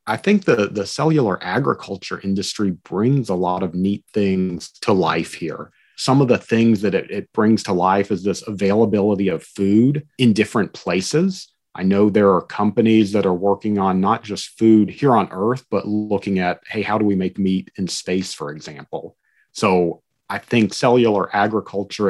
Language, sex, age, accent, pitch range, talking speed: English, male, 40-59, American, 95-115 Hz, 180 wpm